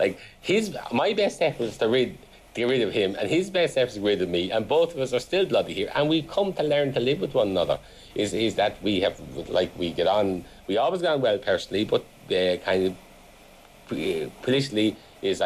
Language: English